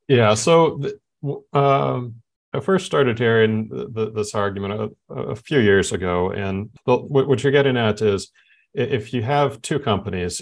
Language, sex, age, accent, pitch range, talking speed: English, male, 40-59, American, 95-115 Hz, 145 wpm